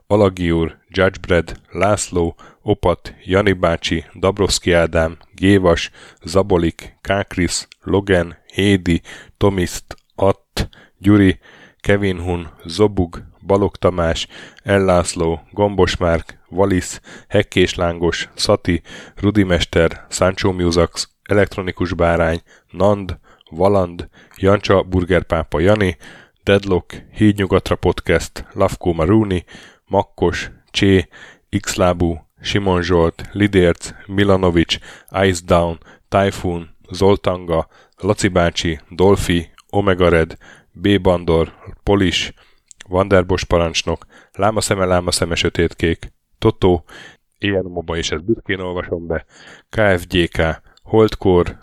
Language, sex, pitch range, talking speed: Hungarian, male, 85-100 Hz, 90 wpm